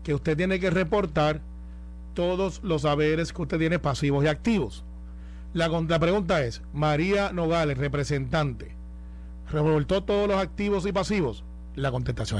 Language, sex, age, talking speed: Spanish, male, 40-59, 140 wpm